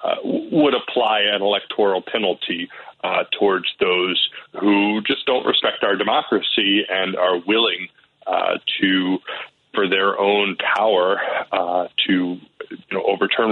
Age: 40-59